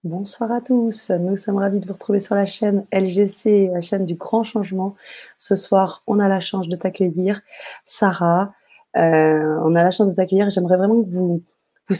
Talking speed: 195 wpm